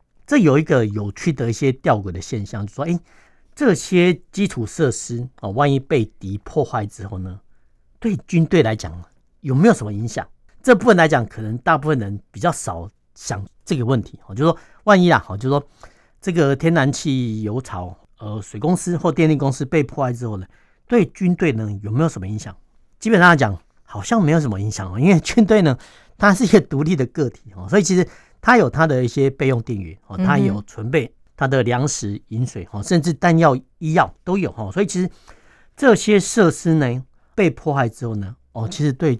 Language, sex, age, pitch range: Chinese, male, 50-69, 110-165 Hz